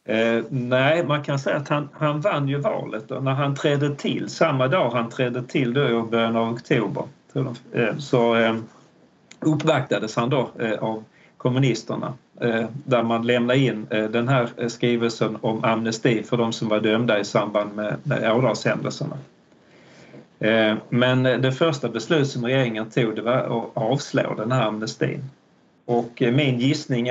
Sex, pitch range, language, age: male, 115-135 Hz, Swedish, 40-59